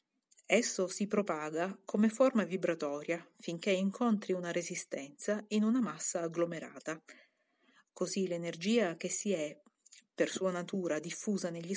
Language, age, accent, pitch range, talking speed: Italian, 40-59, native, 170-220 Hz, 120 wpm